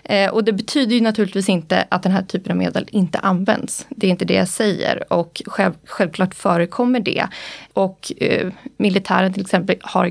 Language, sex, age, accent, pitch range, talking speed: Swedish, female, 20-39, native, 185-225 Hz, 170 wpm